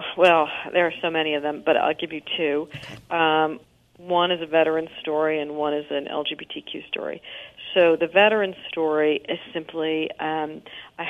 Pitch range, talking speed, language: 150-170 Hz, 175 wpm, English